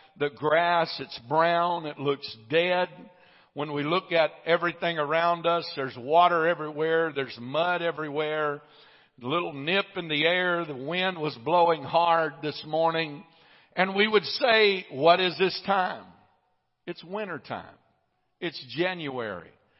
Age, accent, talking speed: 50-69, American, 140 wpm